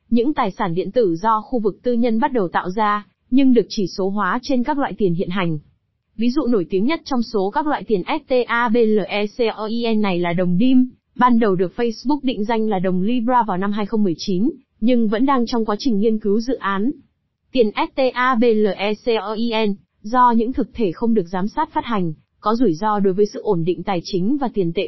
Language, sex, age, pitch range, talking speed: Vietnamese, female, 20-39, 200-250 Hz, 210 wpm